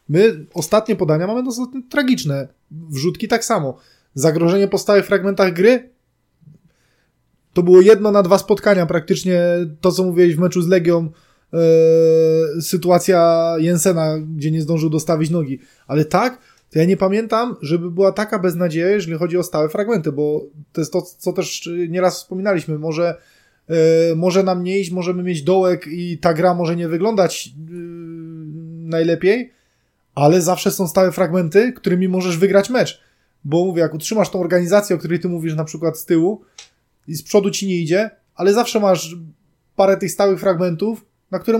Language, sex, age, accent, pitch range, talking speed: Polish, male, 20-39, native, 165-195 Hz, 165 wpm